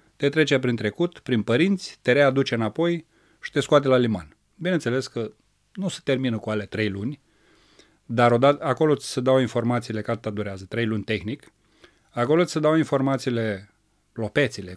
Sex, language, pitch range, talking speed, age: male, Romanian, 110-140 Hz, 170 wpm, 30-49